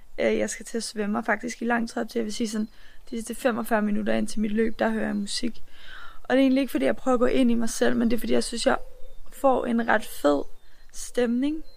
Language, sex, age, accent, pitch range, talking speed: Danish, female, 20-39, native, 210-245 Hz, 260 wpm